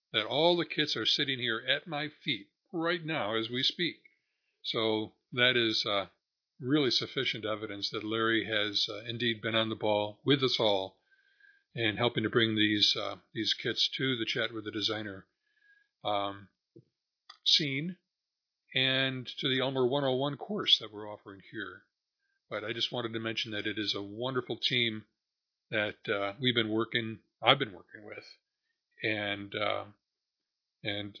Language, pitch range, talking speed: English, 110-155 Hz, 160 wpm